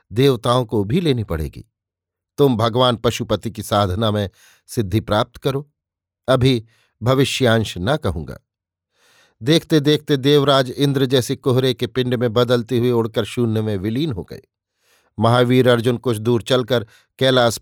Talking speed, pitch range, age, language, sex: 140 wpm, 110-130 Hz, 50-69, Hindi, male